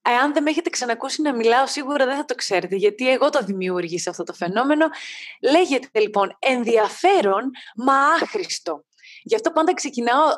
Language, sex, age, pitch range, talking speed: Greek, female, 20-39, 215-315 Hz, 160 wpm